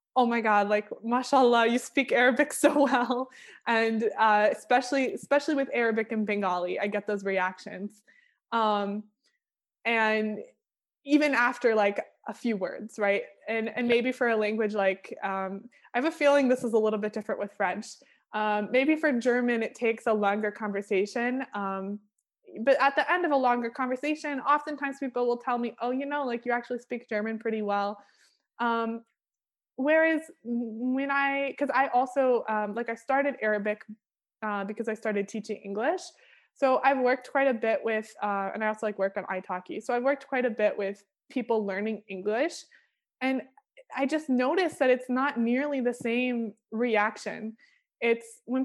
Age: 20-39